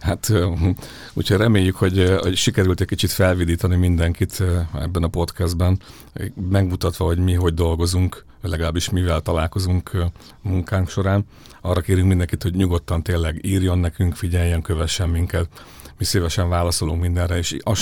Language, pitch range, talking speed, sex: English, 85-95 Hz, 135 wpm, male